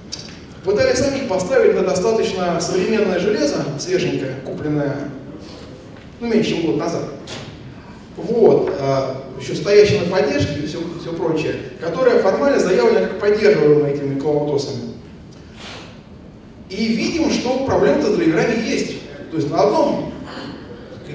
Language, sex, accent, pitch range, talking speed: Russian, male, native, 160-235 Hz, 120 wpm